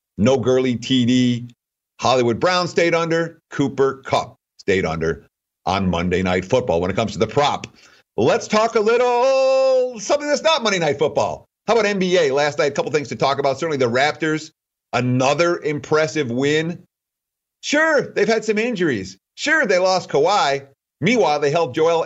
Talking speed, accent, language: 165 wpm, American, English